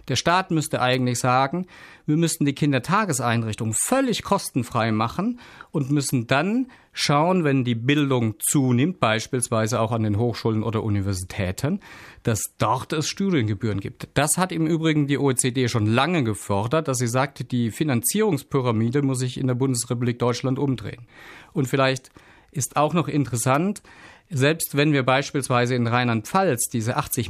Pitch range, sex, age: 115-145 Hz, male, 50-69